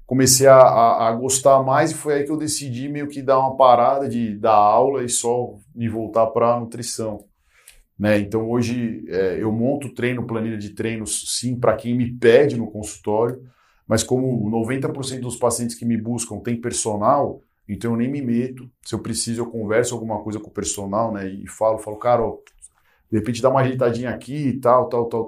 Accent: Brazilian